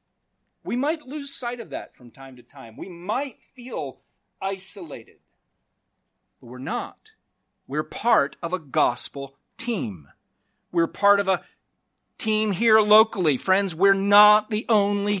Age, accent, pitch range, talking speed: 40-59, American, 190-245 Hz, 140 wpm